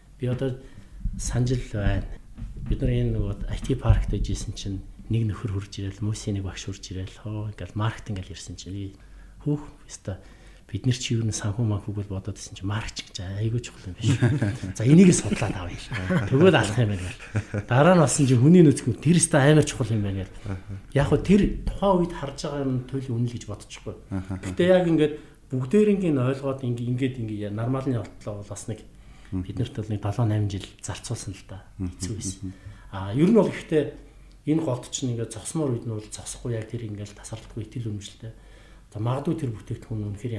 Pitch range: 100-130 Hz